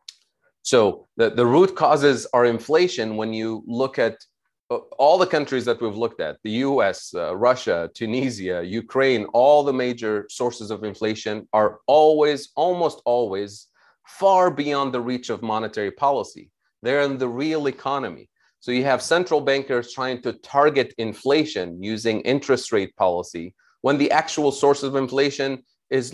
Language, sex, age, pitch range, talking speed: Russian, male, 30-49, 110-140 Hz, 150 wpm